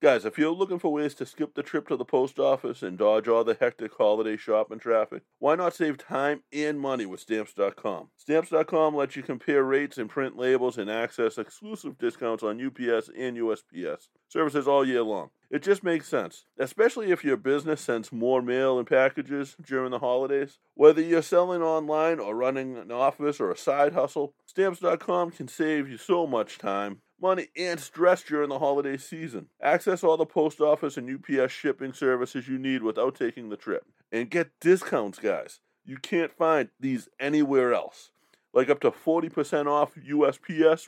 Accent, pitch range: American, 130-170 Hz